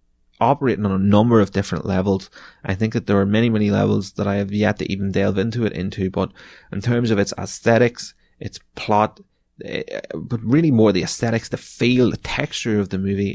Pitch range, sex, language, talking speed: 100-110 Hz, male, English, 200 wpm